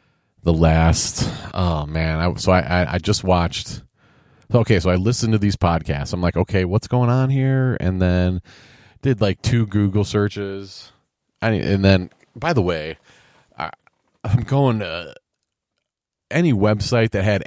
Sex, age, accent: male, 30-49, American